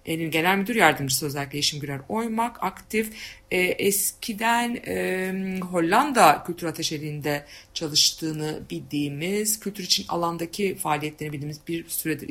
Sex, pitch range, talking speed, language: female, 155-220 Hz, 100 wpm, Turkish